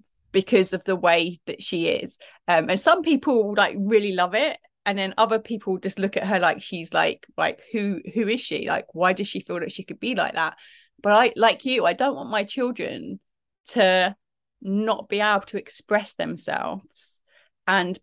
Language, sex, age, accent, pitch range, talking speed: English, female, 30-49, British, 175-210 Hz, 195 wpm